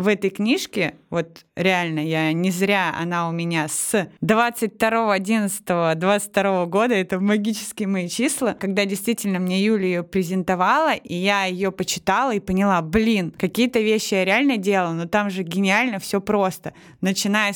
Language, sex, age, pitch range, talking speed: Russian, female, 20-39, 180-215 Hz, 145 wpm